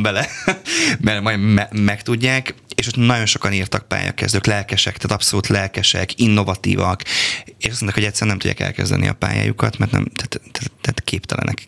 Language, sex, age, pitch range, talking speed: Hungarian, male, 20-39, 95-120 Hz, 160 wpm